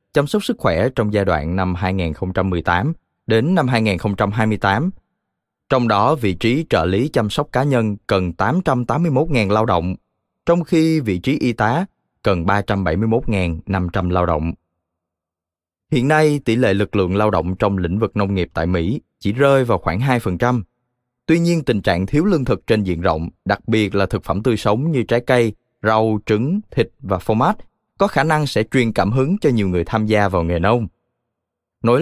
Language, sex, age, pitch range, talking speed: Vietnamese, male, 20-39, 95-125 Hz, 185 wpm